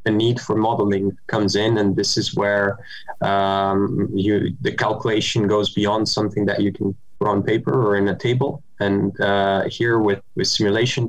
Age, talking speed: 20-39, 175 wpm